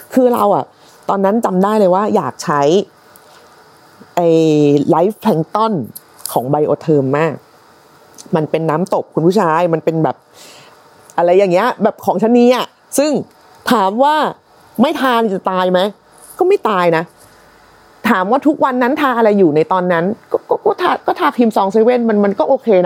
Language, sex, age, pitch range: Thai, female, 30-49, 170-245 Hz